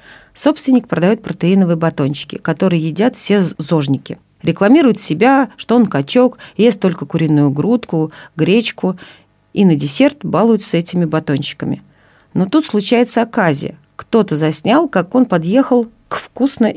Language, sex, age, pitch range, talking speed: Russian, female, 40-59, 160-225 Hz, 125 wpm